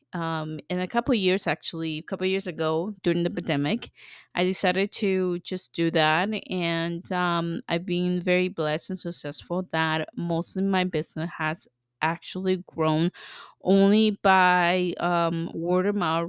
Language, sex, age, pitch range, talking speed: English, female, 20-39, 160-190 Hz, 155 wpm